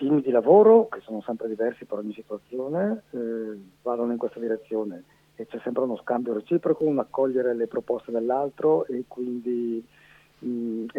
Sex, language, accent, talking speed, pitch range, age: male, Italian, native, 165 wpm, 115-145 Hz, 50-69